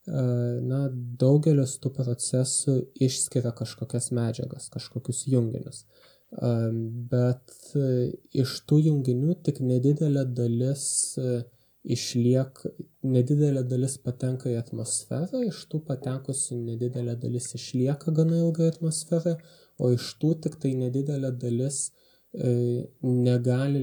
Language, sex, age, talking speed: English, male, 20-39, 100 wpm